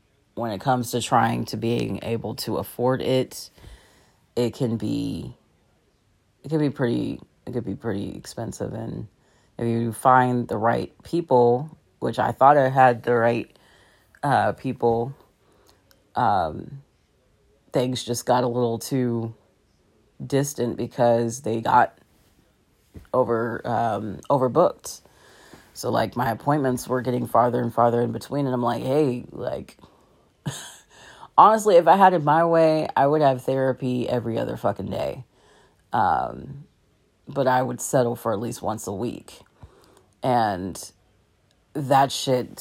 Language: English